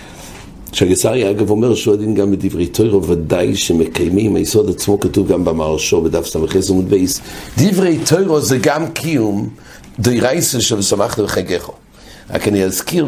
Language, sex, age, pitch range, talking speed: English, male, 60-79, 90-110 Hz, 145 wpm